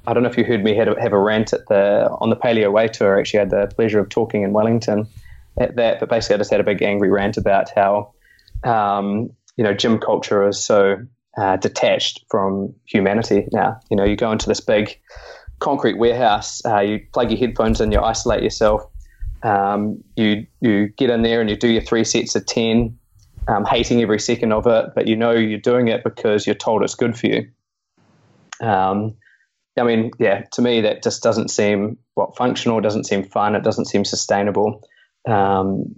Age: 20-39